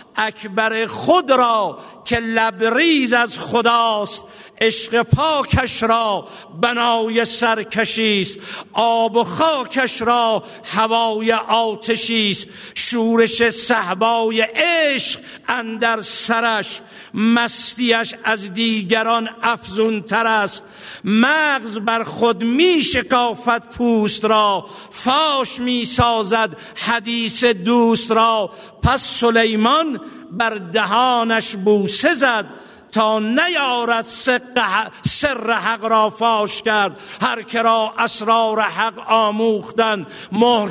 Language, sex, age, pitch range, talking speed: Persian, male, 50-69, 220-240 Hz, 90 wpm